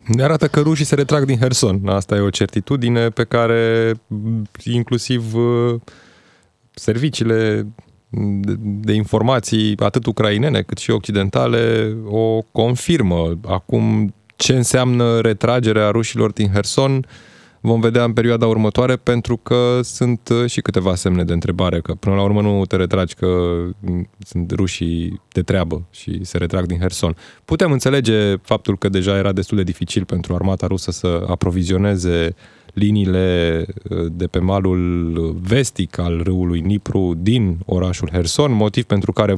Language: Romanian